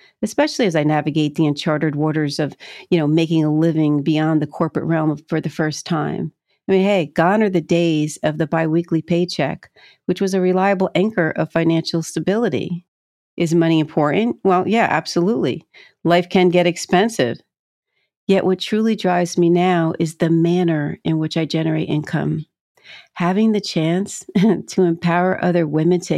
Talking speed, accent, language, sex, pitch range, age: 165 wpm, American, English, female, 160-185 Hz, 50-69